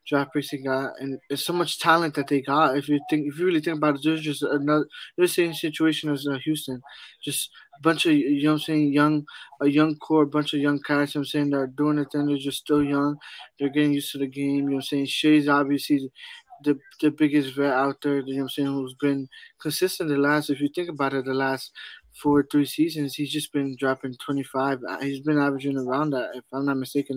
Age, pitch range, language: 20-39, 140-160 Hz, English